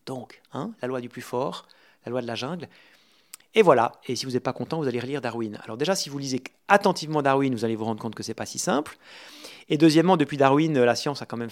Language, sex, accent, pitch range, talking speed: French, male, French, 120-150 Hz, 265 wpm